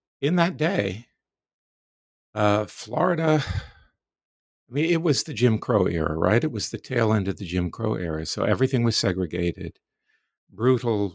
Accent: American